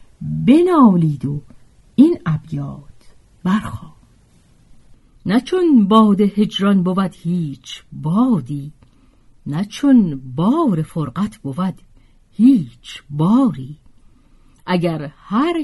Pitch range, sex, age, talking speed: 145-240 Hz, female, 50-69, 70 wpm